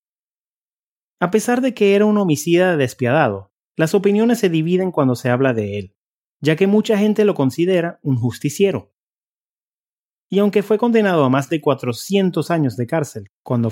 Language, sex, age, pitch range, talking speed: English, male, 30-49, 125-185 Hz, 160 wpm